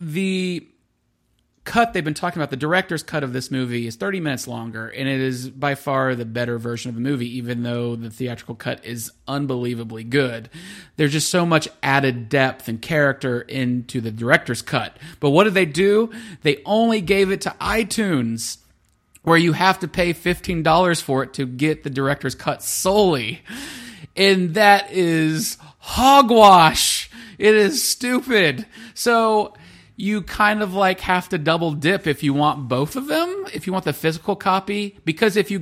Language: English